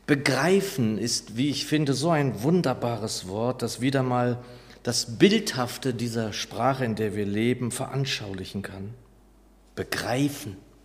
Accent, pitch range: German, 105-135 Hz